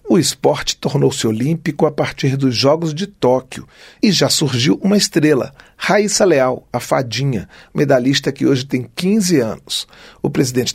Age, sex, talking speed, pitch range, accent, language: 40-59, male, 150 wpm, 150-180 Hz, Brazilian, Portuguese